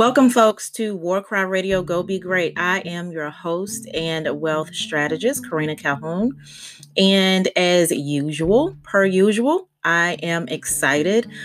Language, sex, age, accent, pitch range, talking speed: English, female, 30-49, American, 160-195 Hz, 130 wpm